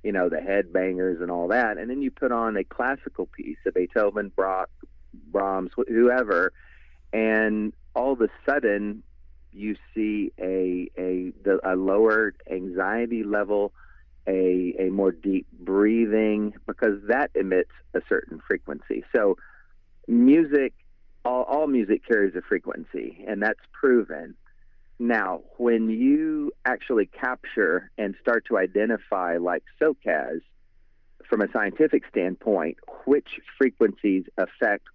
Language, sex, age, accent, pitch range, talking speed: English, male, 40-59, American, 95-120 Hz, 125 wpm